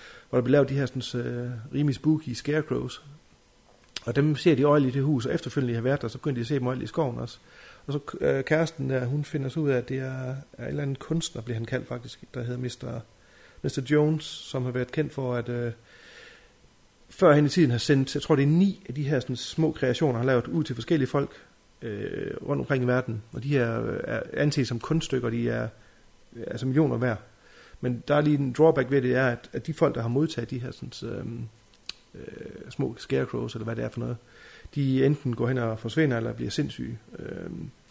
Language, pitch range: Danish, 115-140 Hz